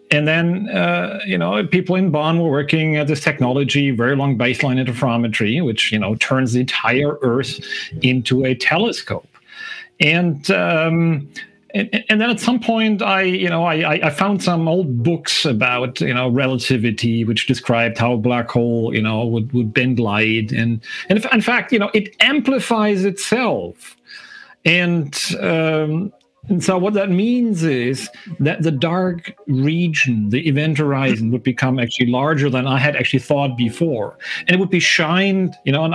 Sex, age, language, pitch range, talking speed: male, 40-59, English, 130-185 Hz, 170 wpm